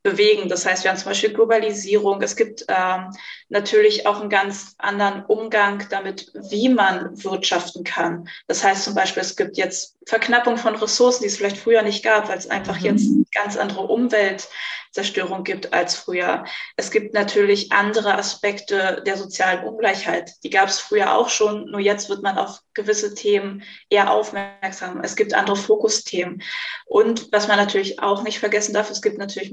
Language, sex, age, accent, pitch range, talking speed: German, female, 20-39, German, 195-220 Hz, 175 wpm